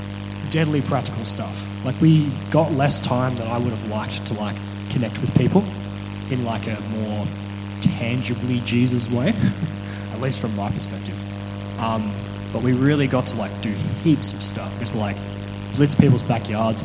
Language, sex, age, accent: English, male, 20-39, Australian